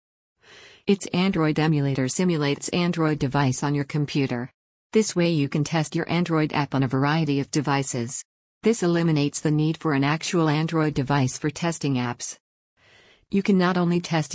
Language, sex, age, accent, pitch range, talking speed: English, female, 50-69, American, 140-165 Hz, 165 wpm